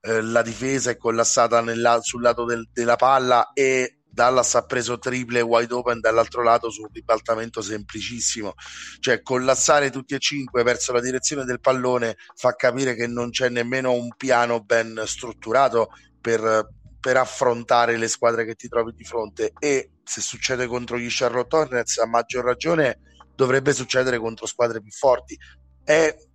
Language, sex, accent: Italian, male, native